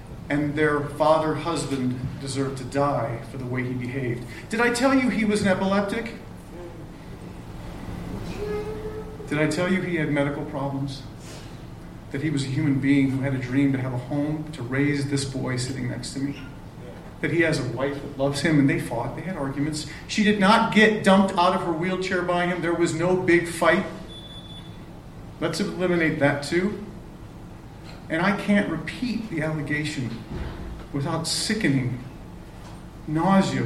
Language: English